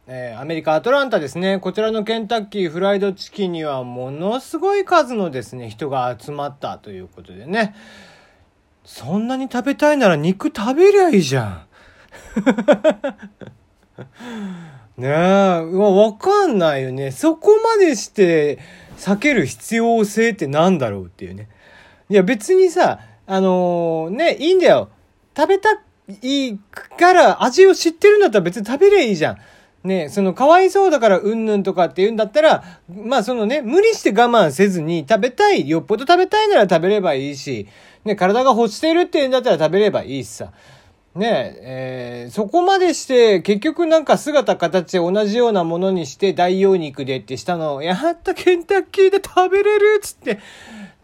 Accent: native